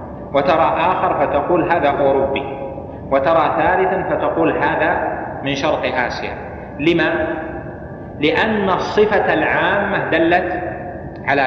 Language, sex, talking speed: Arabic, male, 95 wpm